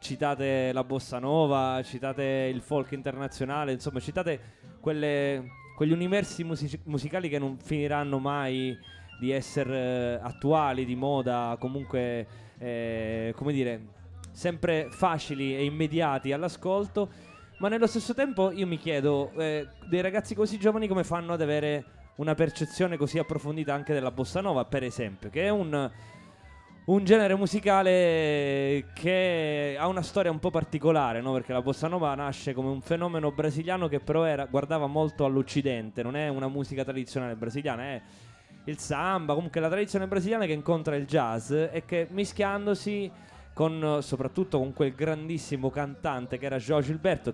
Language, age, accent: English, 20-39, Italian